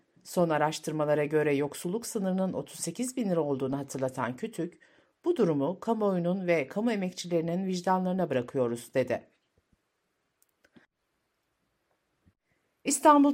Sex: female